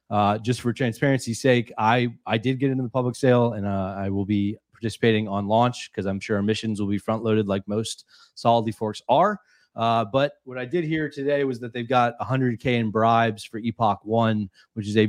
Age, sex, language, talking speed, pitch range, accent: 30-49, male, English, 220 wpm, 105-125 Hz, American